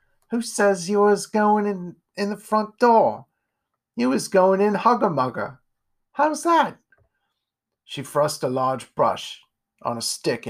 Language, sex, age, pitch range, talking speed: English, male, 40-59, 120-160 Hz, 145 wpm